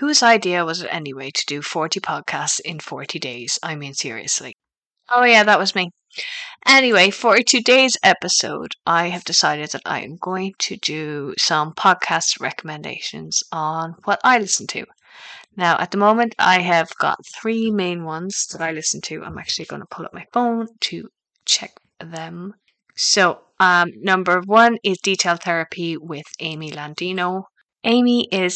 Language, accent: English, Irish